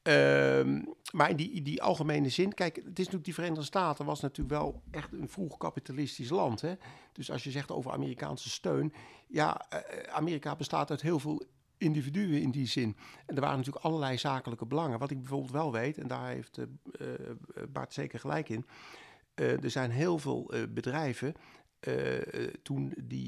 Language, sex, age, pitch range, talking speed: Dutch, male, 50-69, 120-160 Hz, 180 wpm